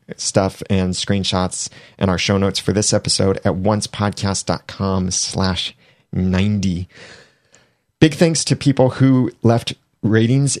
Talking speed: 120 wpm